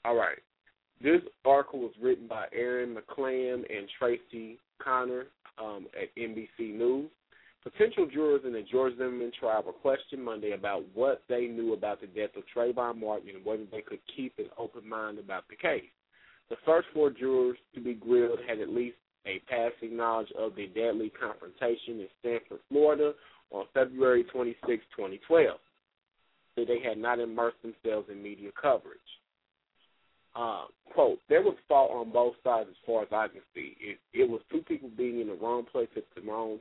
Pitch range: 115-160 Hz